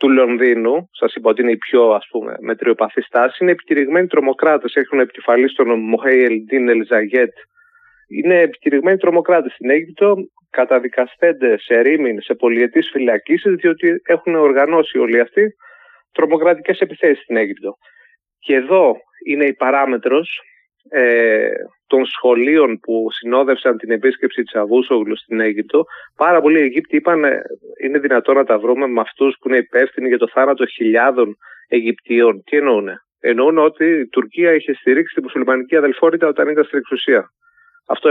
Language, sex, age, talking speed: Greek, male, 30-49, 145 wpm